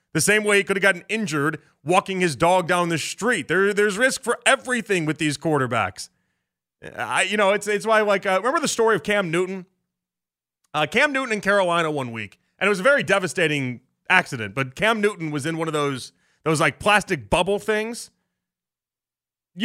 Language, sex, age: English, male, 30-49